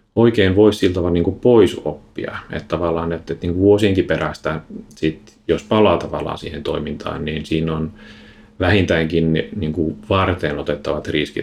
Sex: male